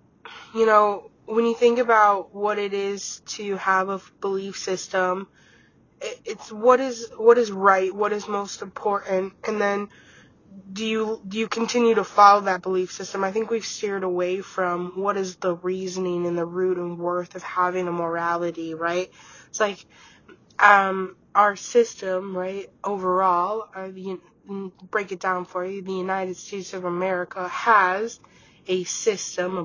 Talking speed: 160 wpm